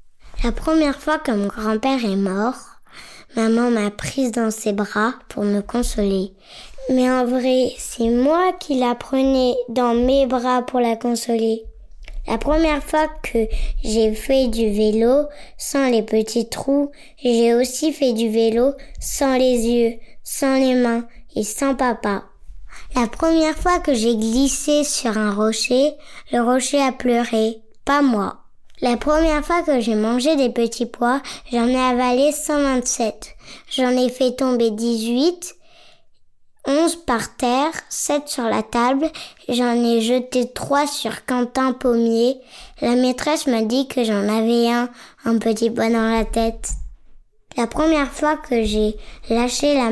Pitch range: 230-275 Hz